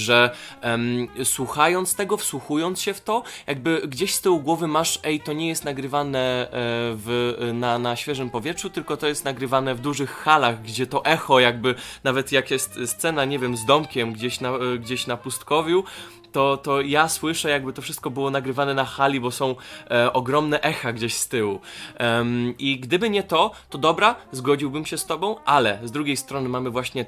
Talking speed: 175 wpm